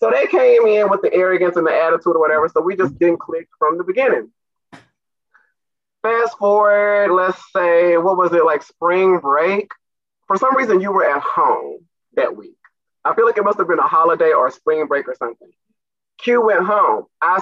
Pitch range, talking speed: 175-265 Hz, 200 wpm